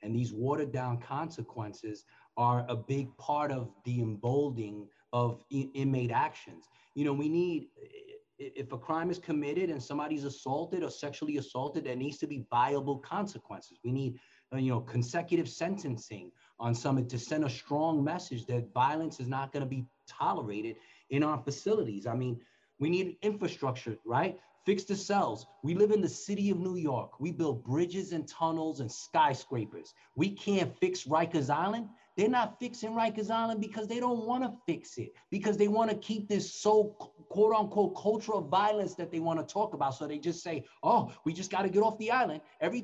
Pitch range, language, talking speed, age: 135-200 Hz, English, 185 wpm, 30-49